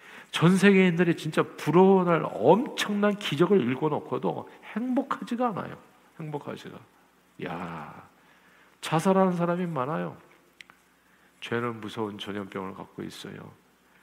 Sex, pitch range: male, 115-155 Hz